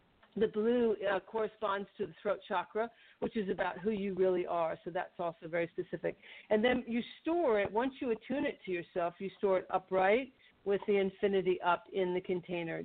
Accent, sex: American, female